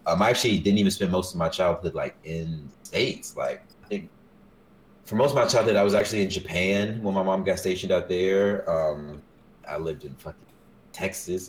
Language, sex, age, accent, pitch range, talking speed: English, male, 30-49, American, 85-105 Hz, 210 wpm